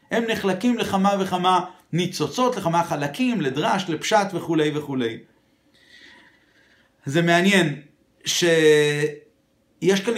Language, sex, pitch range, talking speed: Hebrew, male, 170-235 Hz, 90 wpm